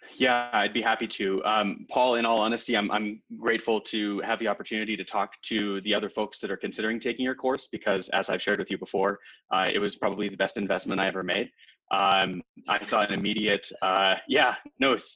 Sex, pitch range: male, 100-115 Hz